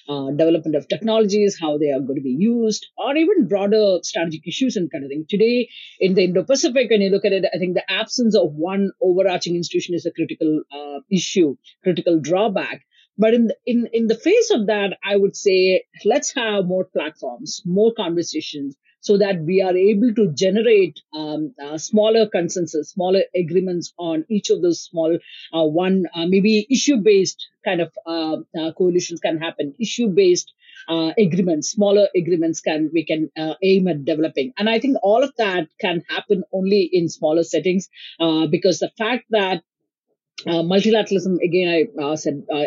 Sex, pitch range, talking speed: female, 160-210 Hz, 180 wpm